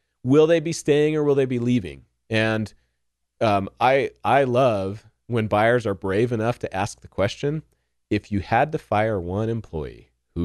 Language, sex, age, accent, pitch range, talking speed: English, male, 30-49, American, 85-140 Hz, 180 wpm